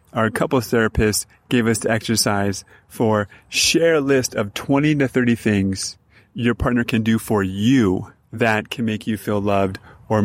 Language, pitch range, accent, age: English, 100-120 Hz, American, 30-49